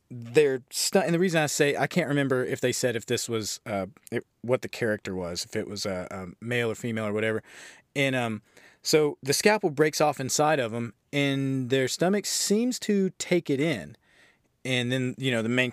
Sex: male